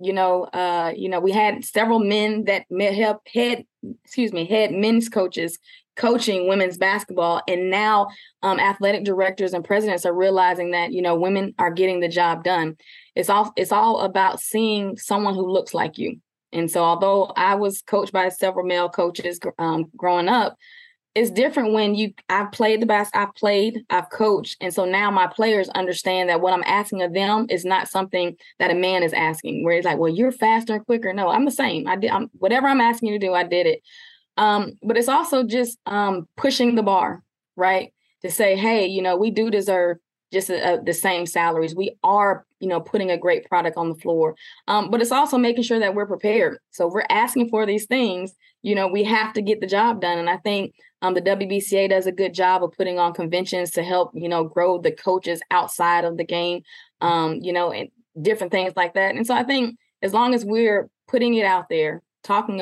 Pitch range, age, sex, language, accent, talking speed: 180-215 Hz, 20-39, female, English, American, 215 wpm